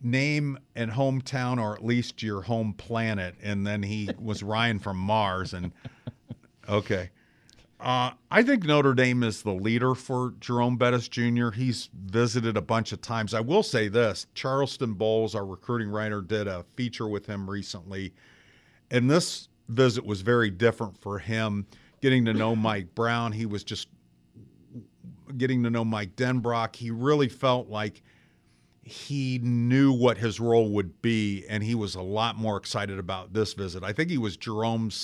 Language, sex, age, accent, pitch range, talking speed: English, male, 50-69, American, 100-120 Hz, 170 wpm